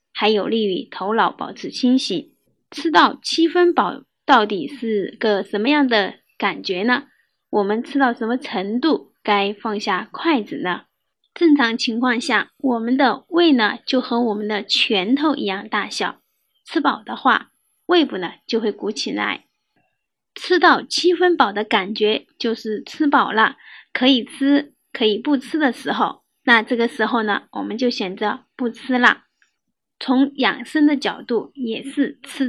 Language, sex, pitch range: Chinese, female, 215-280 Hz